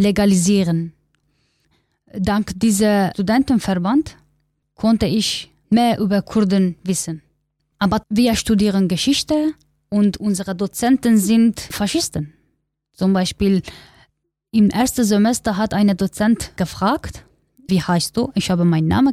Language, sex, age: German, female, 20-39